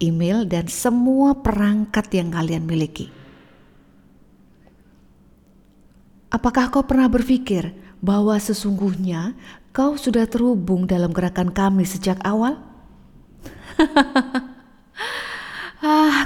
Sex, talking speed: female, 80 wpm